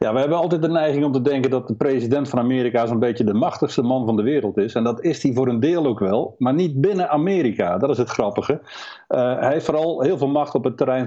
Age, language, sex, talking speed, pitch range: 50-69, Dutch, male, 270 wpm, 115-145 Hz